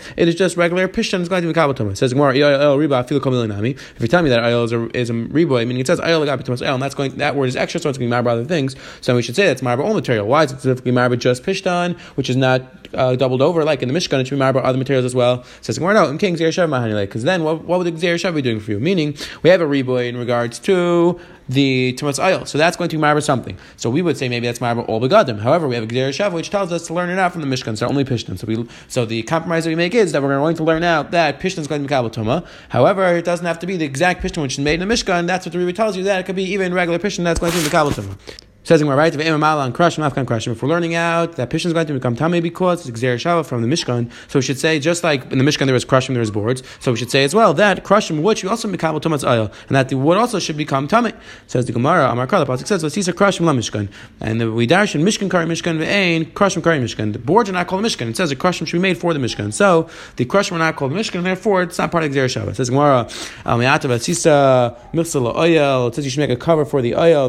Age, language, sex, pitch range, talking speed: 20-39, English, male, 125-175 Hz, 295 wpm